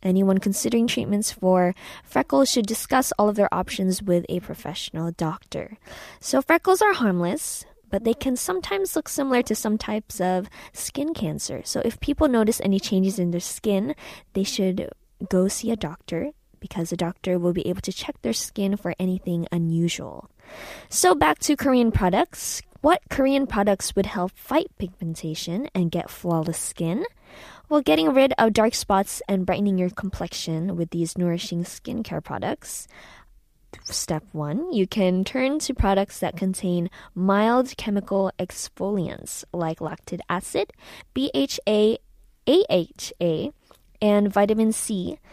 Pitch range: 180-230 Hz